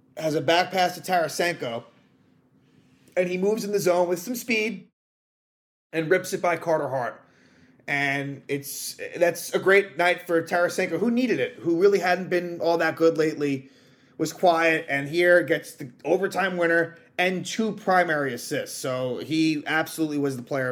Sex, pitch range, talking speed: male, 140-180 Hz, 170 wpm